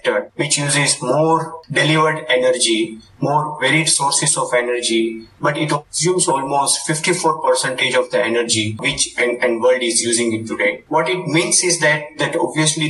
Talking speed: 145 wpm